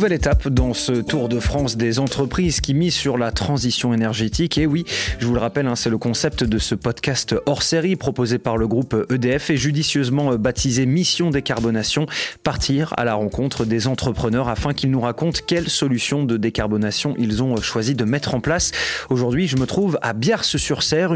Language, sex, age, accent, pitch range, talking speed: French, male, 20-39, French, 120-155 Hz, 185 wpm